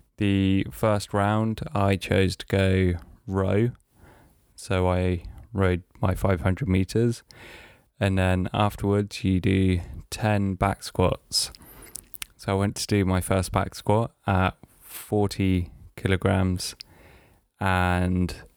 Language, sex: English, male